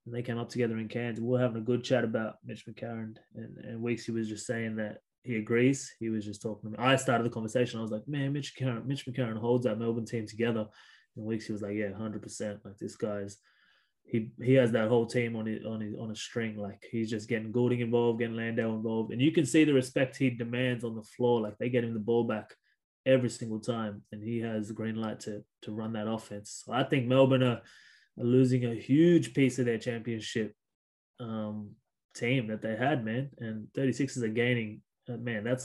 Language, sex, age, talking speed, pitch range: English, male, 20-39, 235 wpm, 110-130 Hz